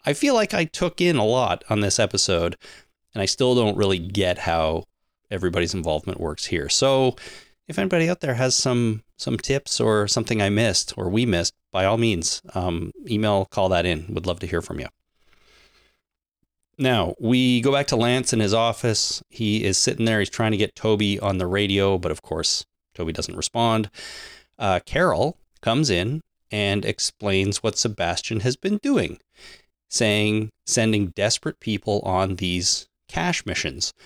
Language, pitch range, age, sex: English, 95-135 Hz, 30-49, male